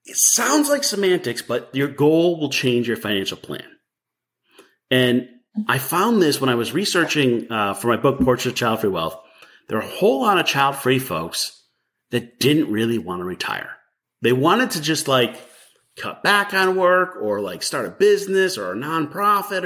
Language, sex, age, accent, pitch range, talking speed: English, male, 30-49, American, 120-180 Hz, 180 wpm